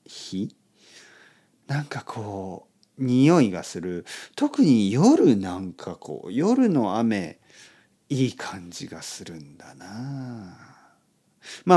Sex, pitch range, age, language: male, 95-135 Hz, 40-59, Japanese